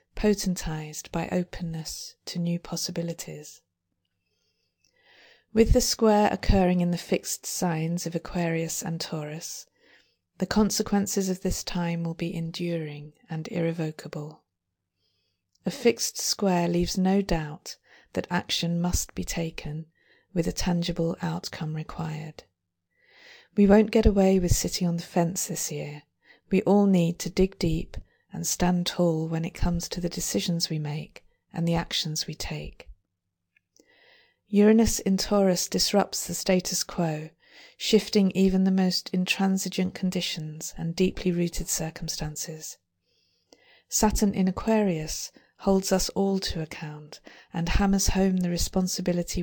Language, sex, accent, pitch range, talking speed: English, female, British, 160-190 Hz, 130 wpm